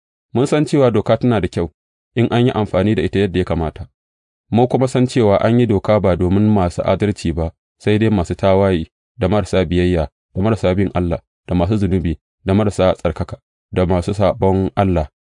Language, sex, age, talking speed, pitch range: English, male, 30-49, 140 wpm, 85-110 Hz